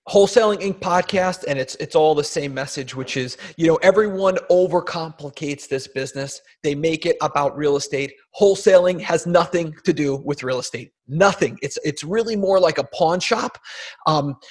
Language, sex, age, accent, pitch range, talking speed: English, male, 30-49, American, 155-210 Hz, 175 wpm